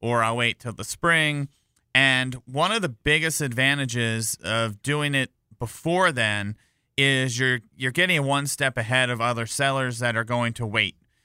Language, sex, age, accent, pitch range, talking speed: English, male, 40-59, American, 120-145 Hz, 170 wpm